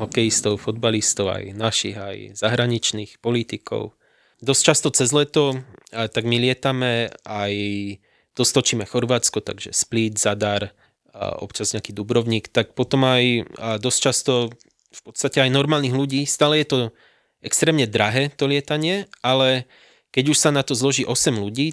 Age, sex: 20-39, male